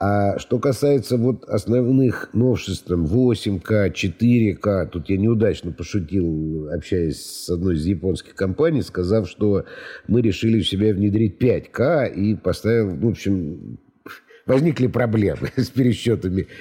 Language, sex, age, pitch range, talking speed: Russian, male, 50-69, 100-125 Hz, 125 wpm